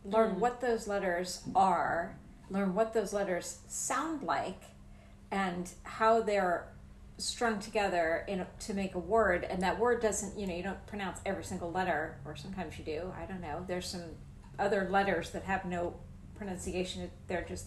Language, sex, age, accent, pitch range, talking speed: English, female, 40-59, American, 190-225 Hz, 170 wpm